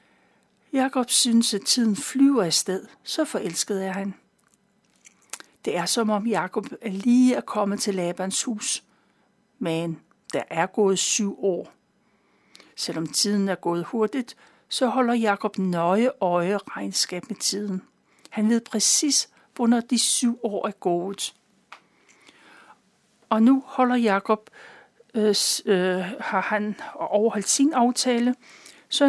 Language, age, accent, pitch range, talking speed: Danish, 60-79, native, 195-255 Hz, 125 wpm